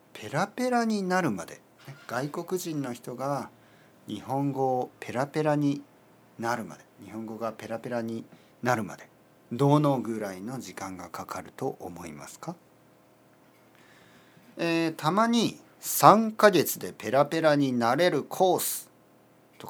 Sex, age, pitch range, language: male, 40-59, 110-165 Hz, Japanese